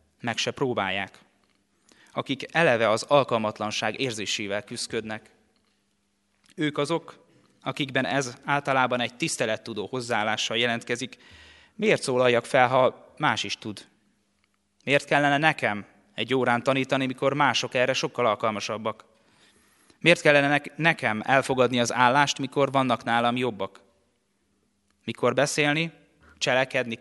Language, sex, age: Hungarian, male, 20-39